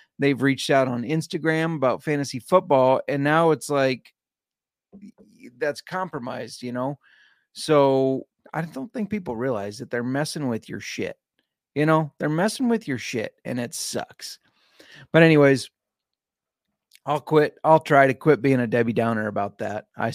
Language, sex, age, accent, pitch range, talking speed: English, male, 30-49, American, 125-155 Hz, 160 wpm